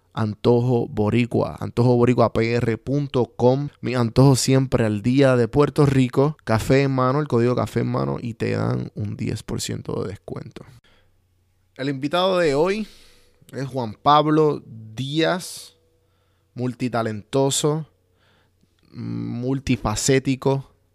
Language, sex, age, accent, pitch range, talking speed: Spanish, male, 20-39, Venezuelan, 105-130 Hz, 105 wpm